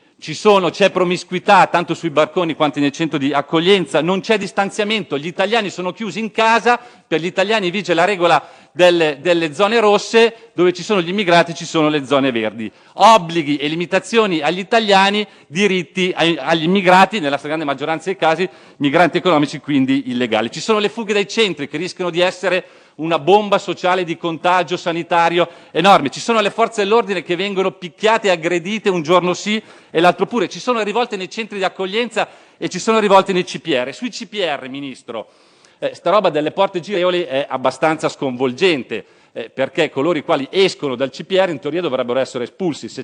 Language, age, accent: Italian, 40-59, native